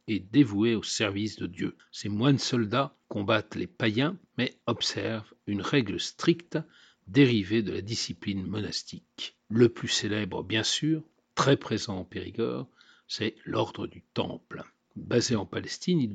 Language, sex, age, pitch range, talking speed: French, male, 60-79, 110-150 Hz, 140 wpm